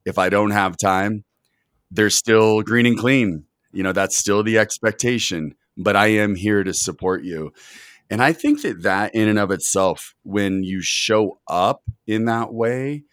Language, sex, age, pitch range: English, male, 30-49, 90-110 Hz